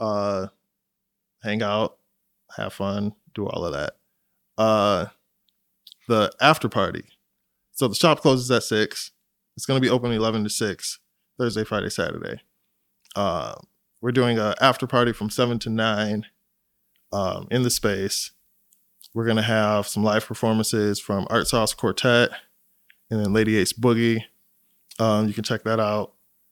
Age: 20-39